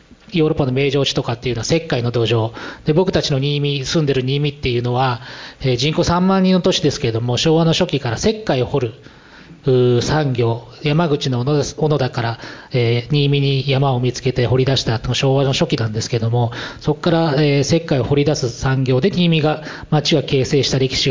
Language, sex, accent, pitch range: Japanese, male, native, 125-165 Hz